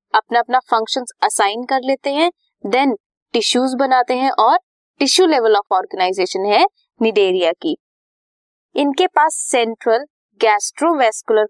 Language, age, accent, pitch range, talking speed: Hindi, 20-39, native, 220-310 Hz, 120 wpm